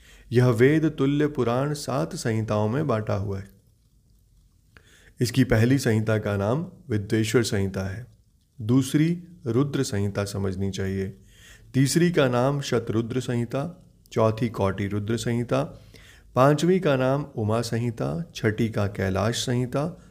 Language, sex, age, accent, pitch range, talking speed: Hindi, male, 30-49, native, 105-140 Hz, 120 wpm